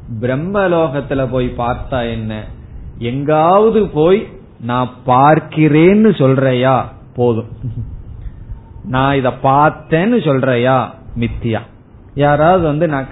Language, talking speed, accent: Tamil, 80 wpm, native